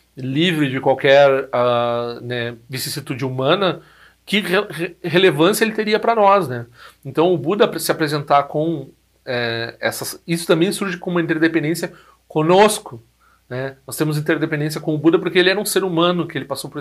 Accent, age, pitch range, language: Brazilian, 40-59, 130-170 Hz, Portuguese